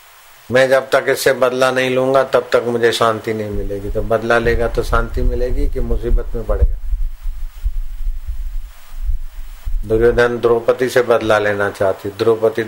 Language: Hindi